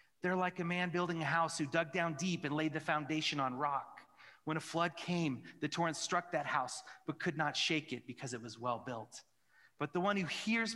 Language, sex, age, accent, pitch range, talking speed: English, male, 30-49, American, 130-170 Hz, 230 wpm